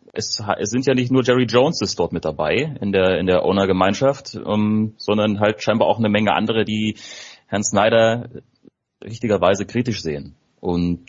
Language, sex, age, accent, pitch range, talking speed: German, male, 30-49, German, 100-120 Hz, 155 wpm